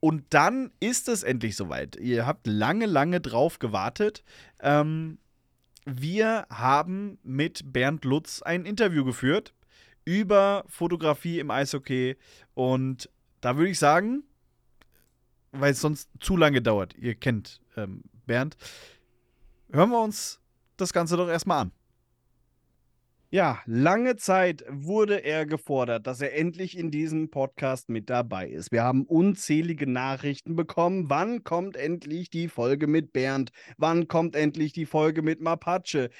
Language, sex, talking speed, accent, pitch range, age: German, male, 135 wpm, German, 130-175 Hz, 30-49